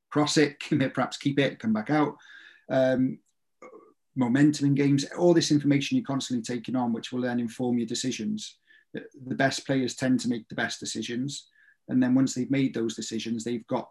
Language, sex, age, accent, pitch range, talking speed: English, male, 30-49, British, 115-135 Hz, 190 wpm